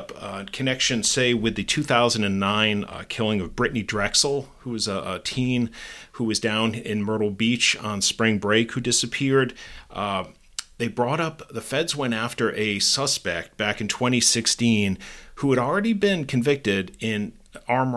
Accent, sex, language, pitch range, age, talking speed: American, male, English, 100-120 Hz, 40-59, 155 wpm